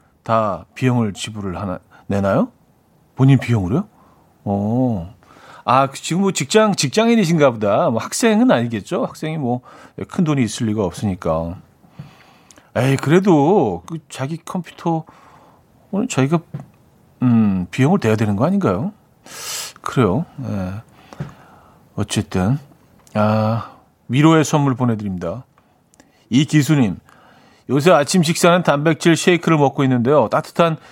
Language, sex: Korean, male